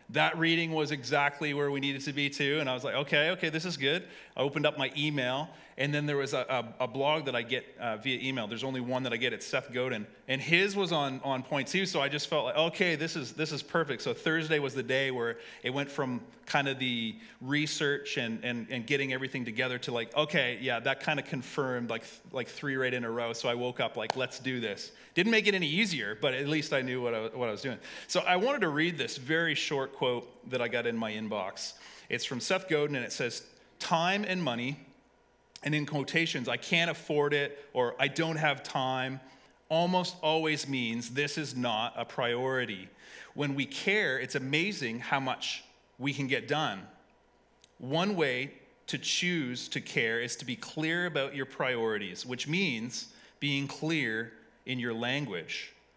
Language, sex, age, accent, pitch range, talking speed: English, male, 30-49, American, 125-155 Hz, 215 wpm